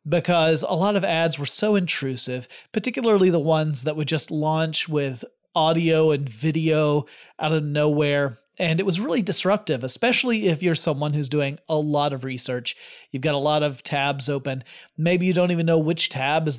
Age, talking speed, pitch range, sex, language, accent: 30-49, 190 wpm, 145-190 Hz, male, English, American